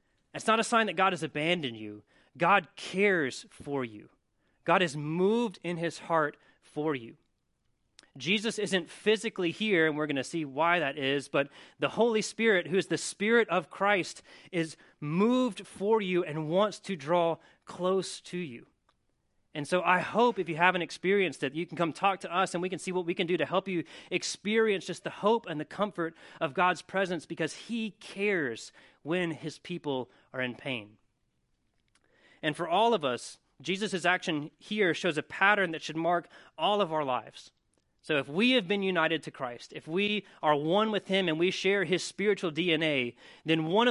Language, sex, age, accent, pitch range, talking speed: English, male, 30-49, American, 155-195 Hz, 190 wpm